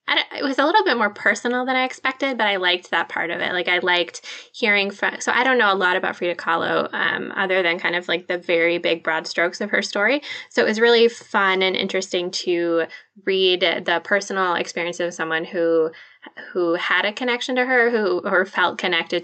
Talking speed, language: 220 wpm, English